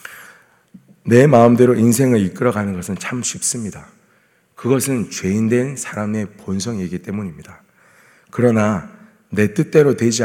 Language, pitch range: Korean, 100-135 Hz